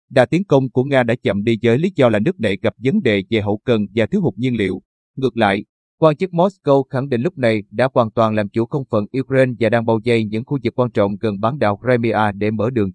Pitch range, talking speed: 110-135 Hz, 270 wpm